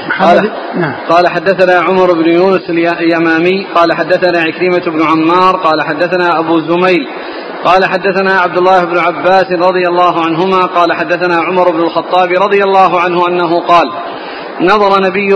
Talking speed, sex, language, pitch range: 140 wpm, male, Arabic, 180-205 Hz